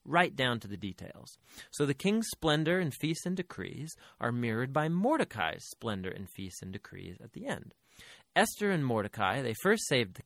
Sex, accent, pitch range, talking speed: male, American, 105-155 Hz, 185 wpm